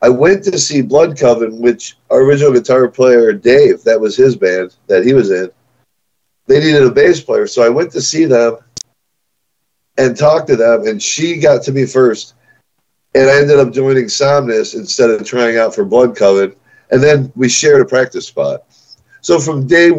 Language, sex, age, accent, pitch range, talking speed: English, male, 40-59, American, 120-155 Hz, 190 wpm